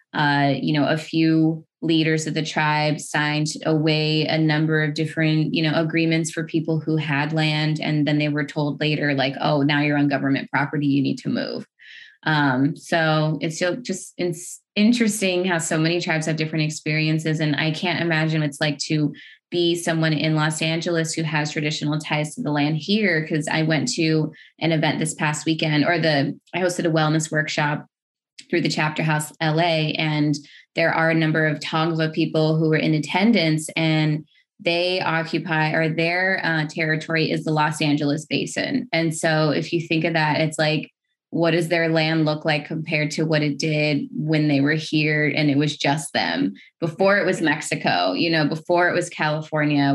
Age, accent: 20-39, American